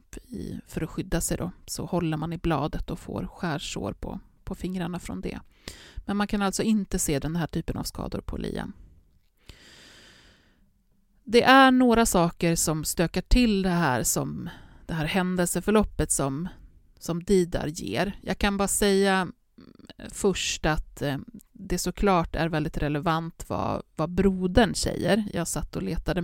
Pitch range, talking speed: 160-195 Hz, 155 wpm